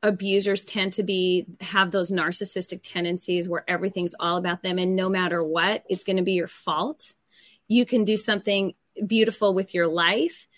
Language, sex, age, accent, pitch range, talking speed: English, female, 30-49, American, 185-220 Hz, 175 wpm